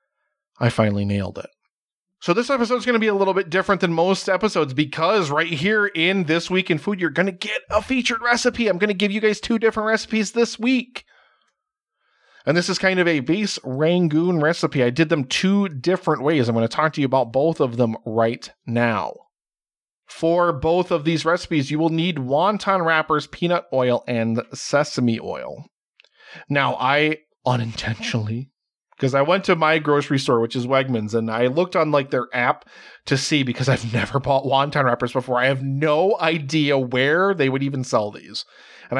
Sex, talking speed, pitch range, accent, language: male, 195 wpm, 125-180 Hz, American, English